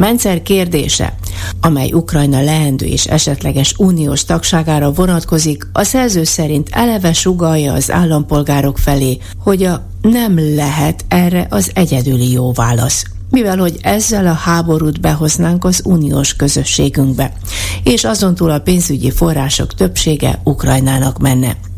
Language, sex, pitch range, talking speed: Hungarian, female, 130-165 Hz, 125 wpm